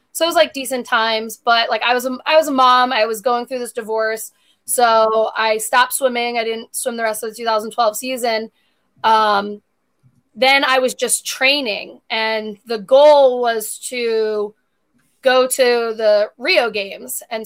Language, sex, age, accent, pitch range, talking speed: English, female, 20-39, American, 220-255 Hz, 175 wpm